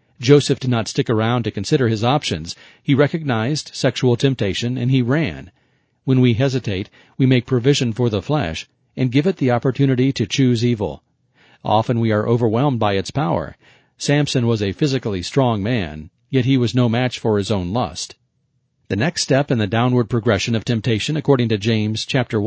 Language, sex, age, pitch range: English, male, 40-59, 110-135 Hz